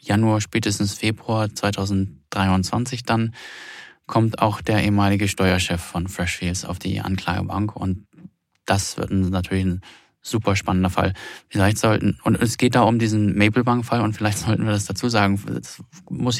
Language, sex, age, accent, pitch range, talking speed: German, male, 20-39, German, 95-110 Hz, 155 wpm